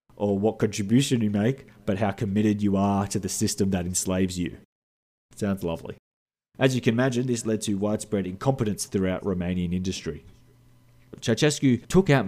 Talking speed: 160 wpm